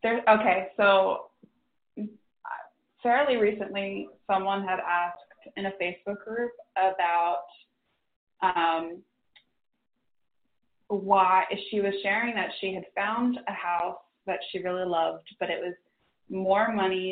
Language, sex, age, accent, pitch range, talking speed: English, female, 20-39, American, 170-195 Hz, 110 wpm